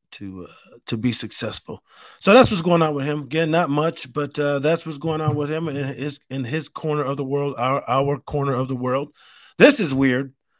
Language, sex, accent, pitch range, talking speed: English, male, American, 115-150 Hz, 225 wpm